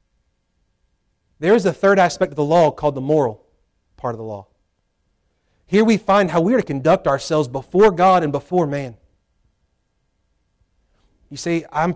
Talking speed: 160 wpm